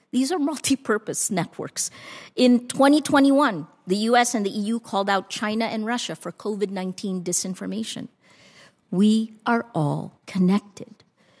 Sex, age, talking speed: female, 50-69, 120 wpm